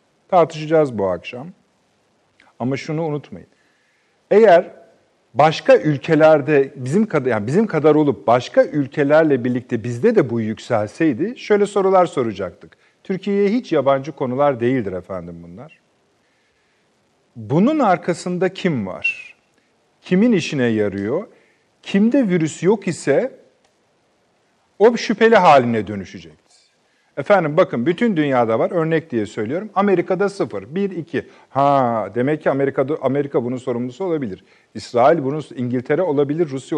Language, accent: Turkish, native